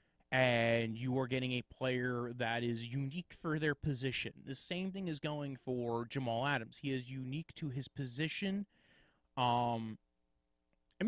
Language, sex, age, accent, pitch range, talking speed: English, male, 20-39, American, 120-150 Hz, 150 wpm